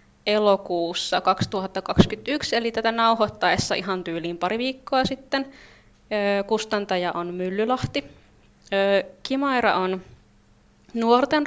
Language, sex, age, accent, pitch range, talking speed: Finnish, female, 20-39, native, 190-245 Hz, 85 wpm